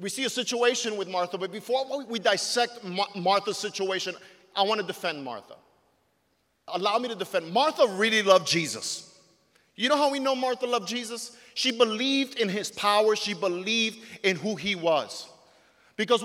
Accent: American